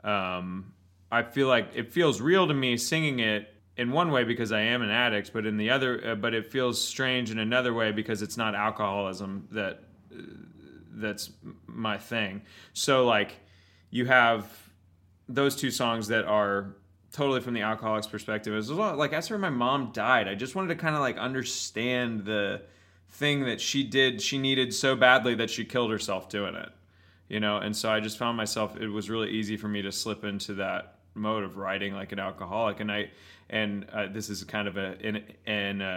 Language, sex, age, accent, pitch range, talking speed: English, male, 20-39, American, 100-120 Hz, 200 wpm